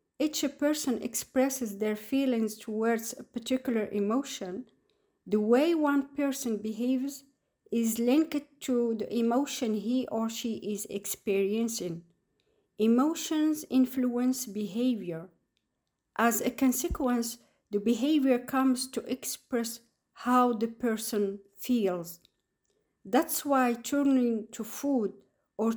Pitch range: 220-265 Hz